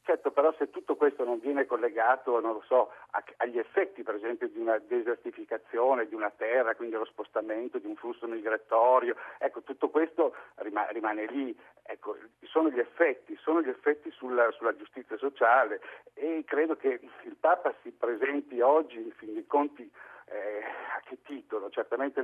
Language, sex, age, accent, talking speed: Italian, male, 60-79, native, 165 wpm